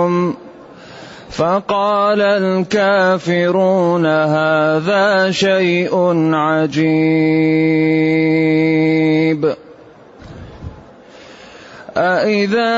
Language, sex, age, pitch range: Arabic, male, 30-49, 160-205 Hz